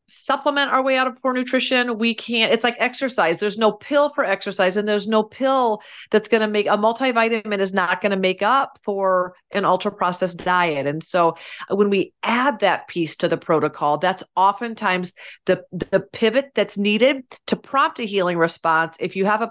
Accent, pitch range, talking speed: American, 180-230 Hz, 190 wpm